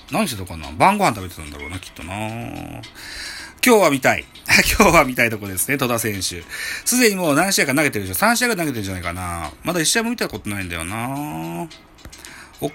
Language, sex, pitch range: Japanese, male, 100-155 Hz